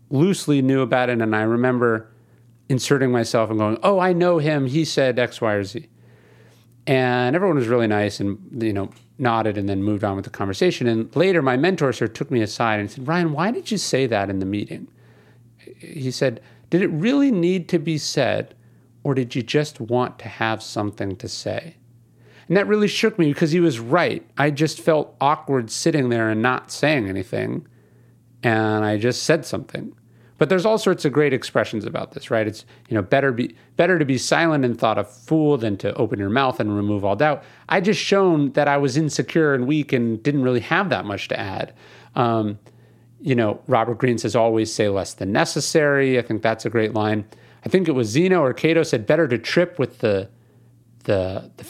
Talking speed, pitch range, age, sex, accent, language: 210 wpm, 115-155 Hz, 40-59, male, American, English